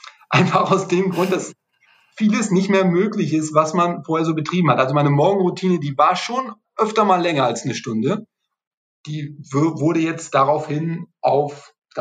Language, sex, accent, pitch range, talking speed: German, male, German, 145-185 Hz, 165 wpm